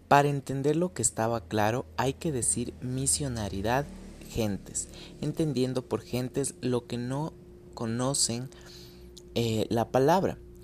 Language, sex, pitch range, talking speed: Spanish, male, 110-130 Hz, 120 wpm